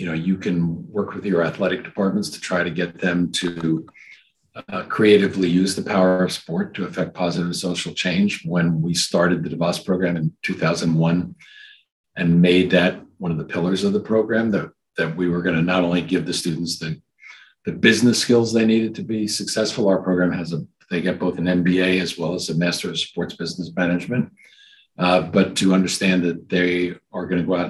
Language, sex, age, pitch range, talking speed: English, male, 50-69, 85-95 Hz, 210 wpm